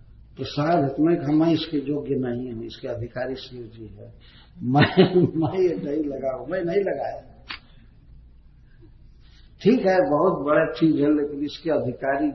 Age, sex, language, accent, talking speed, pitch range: 60-79, male, Hindi, native, 140 wpm, 130-175 Hz